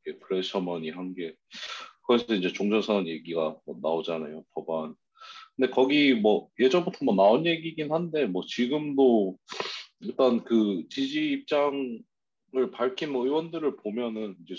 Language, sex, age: Korean, male, 40-59